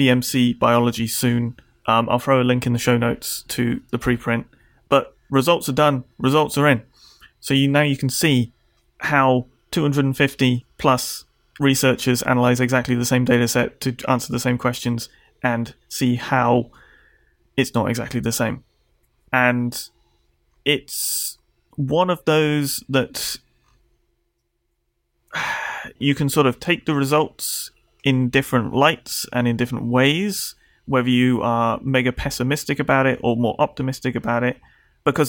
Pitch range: 120-135 Hz